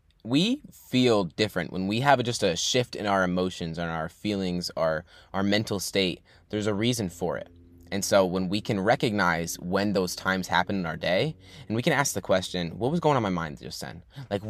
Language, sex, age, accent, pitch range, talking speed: English, male, 10-29, American, 90-120 Hz, 215 wpm